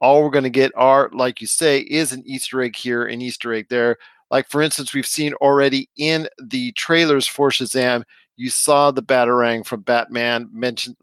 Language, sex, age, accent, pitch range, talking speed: English, male, 40-59, American, 120-145 Hz, 195 wpm